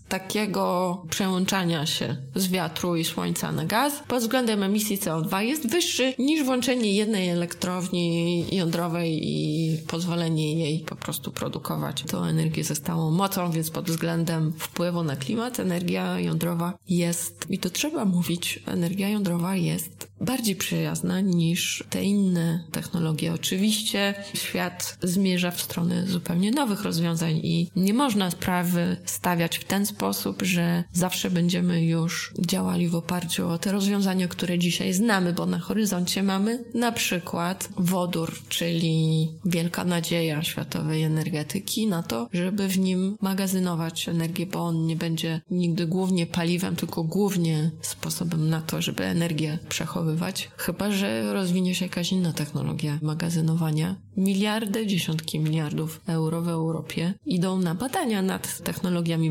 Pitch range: 165-195 Hz